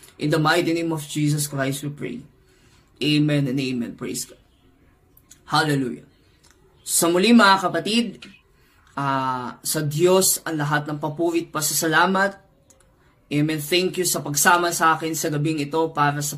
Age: 20-39